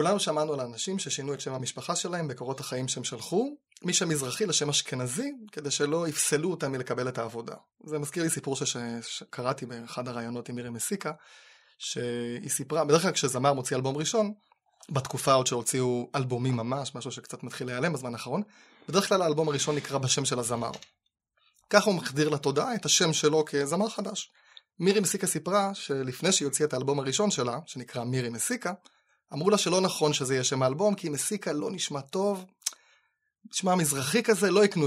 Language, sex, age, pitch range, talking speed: Hebrew, male, 20-39, 130-185 Hz, 155 wpm